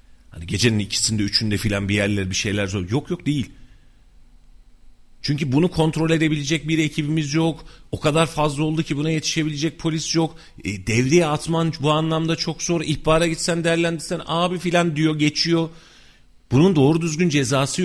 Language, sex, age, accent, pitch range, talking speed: Turkish, male, 40-59, native, 110-165 Hz, 160 wpm